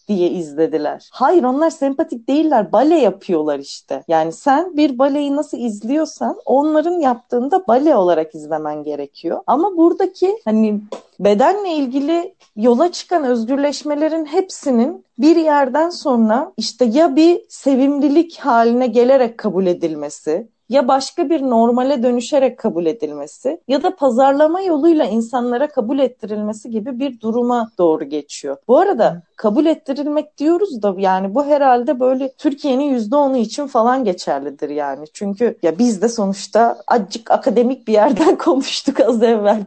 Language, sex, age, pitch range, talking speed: Turkish, female, 40-59, 205-290 Hz, 135 wpm